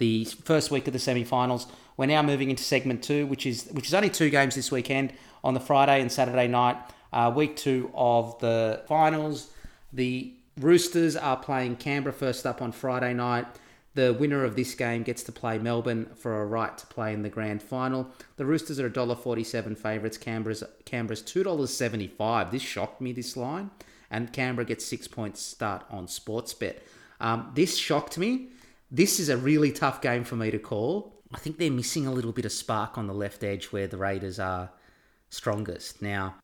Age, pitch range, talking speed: 30-49, 105-130 Hz, 190 wpm